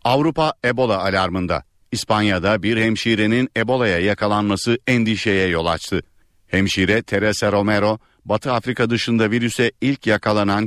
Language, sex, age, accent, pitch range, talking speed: Turkish, male, 50-69, native, 100-120 Hz, 110 wpm